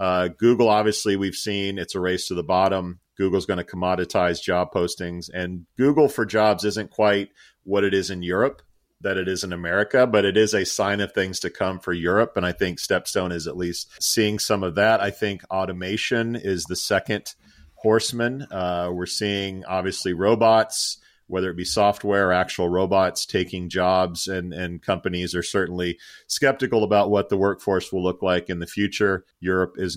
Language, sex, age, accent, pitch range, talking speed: English, male, 40-59, American, 90-105 Hz, 190 wpm